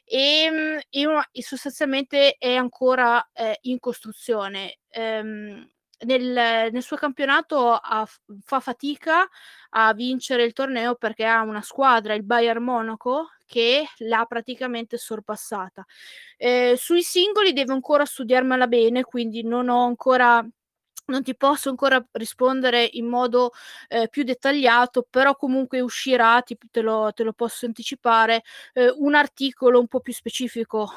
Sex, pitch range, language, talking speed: female, 225-265 Hz, Italian, 130 wpm